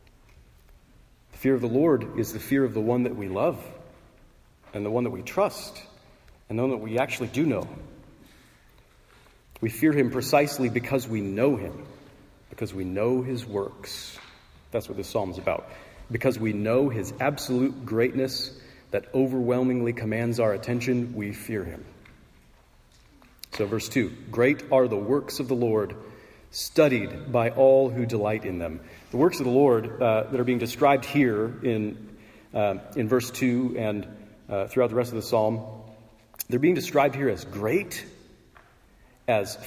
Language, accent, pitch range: English, American, 110-130 Hz